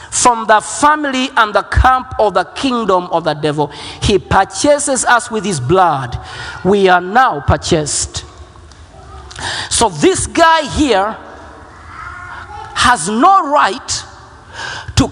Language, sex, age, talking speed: Swedish, male, 50-69, 120 wpm